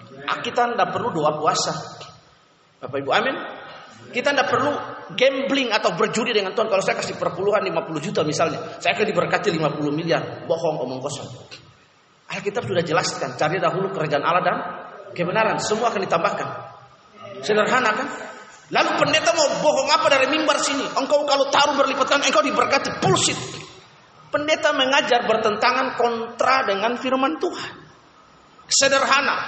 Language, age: Indonesian, 30-49